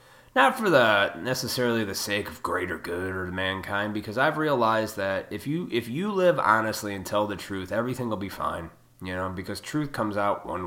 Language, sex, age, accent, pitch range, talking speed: English, male, 20-39, American, 105-150 Hz, 200 wpm